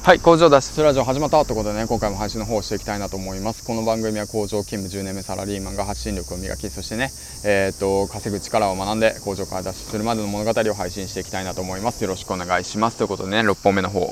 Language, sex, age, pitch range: Japanese, male, 20-39, 95-110 Hz